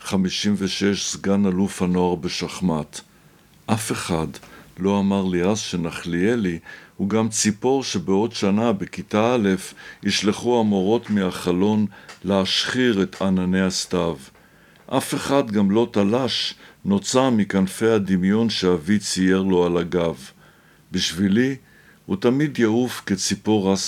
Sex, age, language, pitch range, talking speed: male, 60-79, Hebrew, 90-105 Hz, 115 wpm